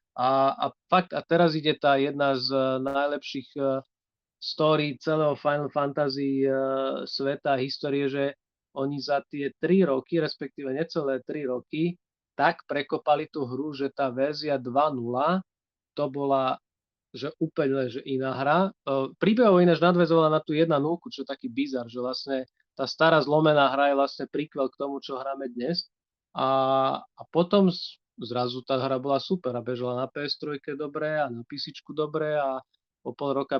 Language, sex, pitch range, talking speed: Slovak, male, 135-155 Hz, 155 wpm